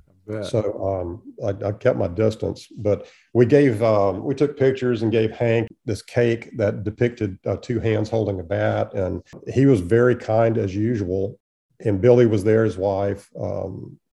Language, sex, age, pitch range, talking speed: English, male, 50-69, 100-115 Hz, 175 wpm